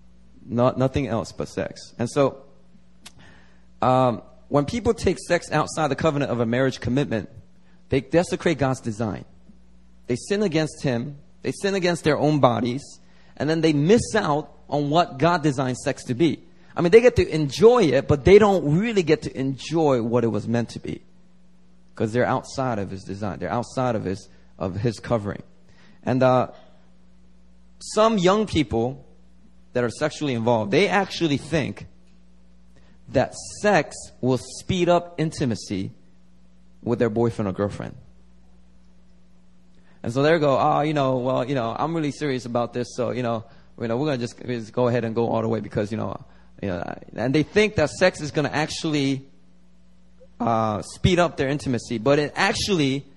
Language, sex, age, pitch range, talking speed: English, male, 30-49, 95-150 Hz, 175 wpm